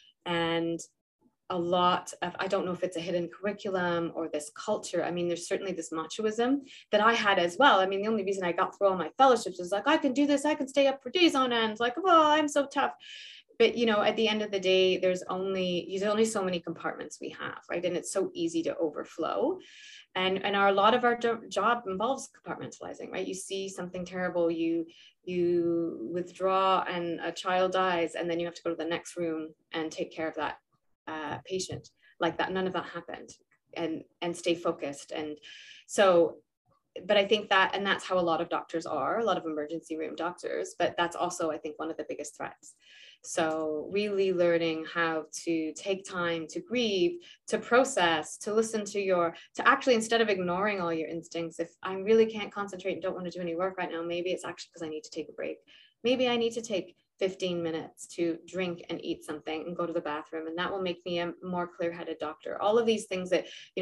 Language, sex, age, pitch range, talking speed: English, female, 20-39, 170-215 Hz, 225 wpm